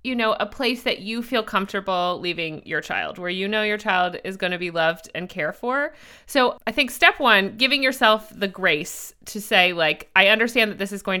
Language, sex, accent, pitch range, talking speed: English, female, American, 190-245 Hz, 225 wpm